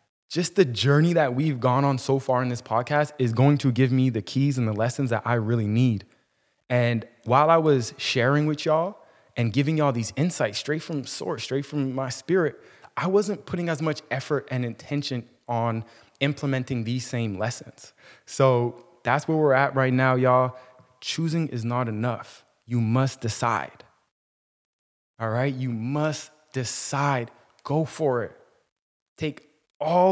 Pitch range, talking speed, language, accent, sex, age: 120-150 Hz, 165 wpm, English, American, male, 20-39